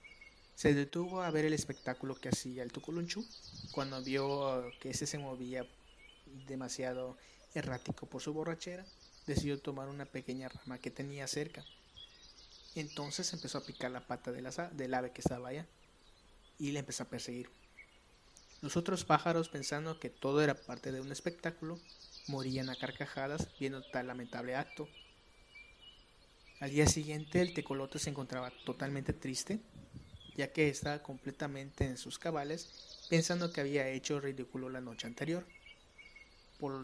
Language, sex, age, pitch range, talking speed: English, male, 30-49, 130-150 Hz, 145 wpm